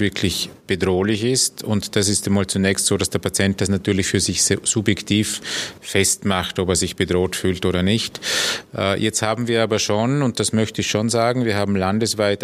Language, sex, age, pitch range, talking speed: German, male, 30-49, 95-110 Hz, 190 wpm